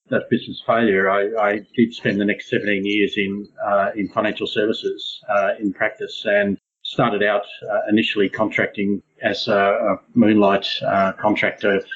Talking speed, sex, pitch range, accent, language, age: 155 wpm, male, 100-115 Hz, Australian, English, 40-59